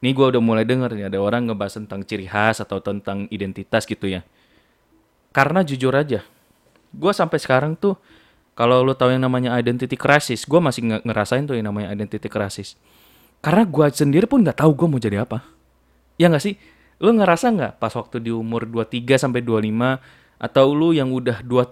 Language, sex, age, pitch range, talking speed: Indonesian, male, 20-39, 110-140 Hz, 185 wpm